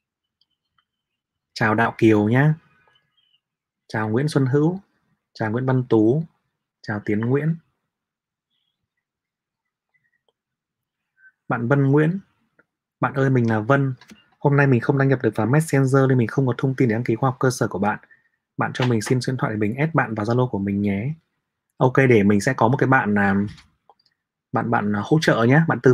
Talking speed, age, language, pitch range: 180 wpm, 20-39, Vietnamese, 110-145 Hz